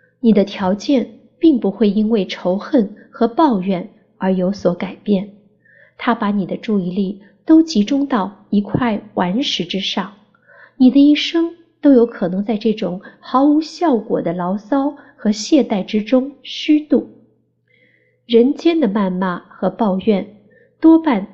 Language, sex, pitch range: Chinese, female, 195-260 Hz